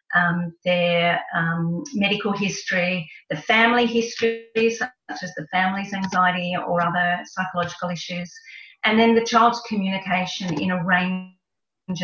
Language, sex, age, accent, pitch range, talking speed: English, female, 40-59, Australian, 175-200 Hz, 125 wpm